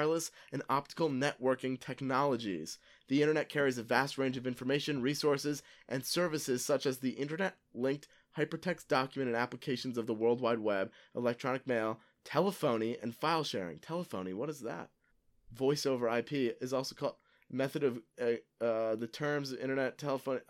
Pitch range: 120-155 Hz